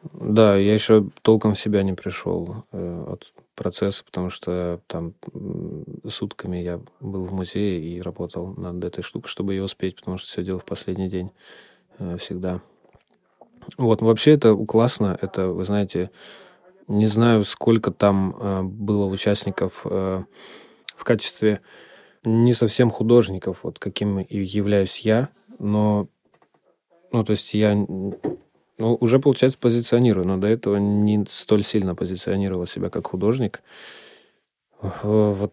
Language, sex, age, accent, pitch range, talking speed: Russian, male, 20-39, native, 95-110 Hz, 140 wpm